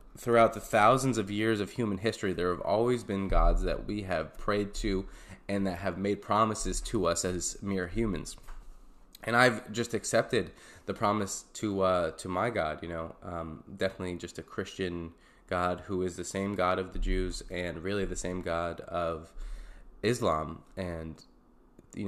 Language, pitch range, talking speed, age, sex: English, 90-115 Hz, 175 wpm, 20-39, male